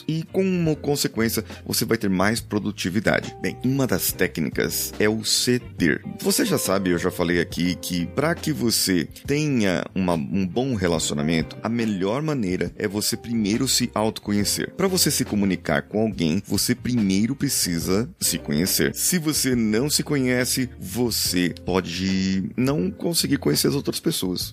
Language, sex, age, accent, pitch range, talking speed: Portuguese, male, 30-49, Brazilian, 90-130 Hz, 155 wpm